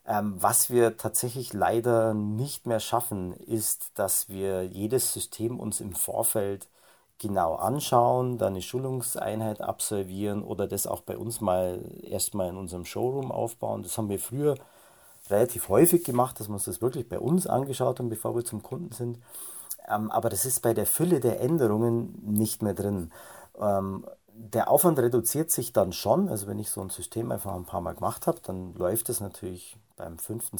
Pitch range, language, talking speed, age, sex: 100-120 Hz, German, 175 wpm, 40-59, male